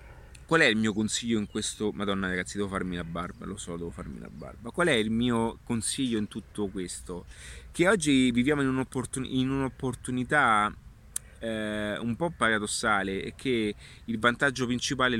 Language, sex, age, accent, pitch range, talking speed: Italian, male, 30-49, native, 100-120 Hz, 170 wpm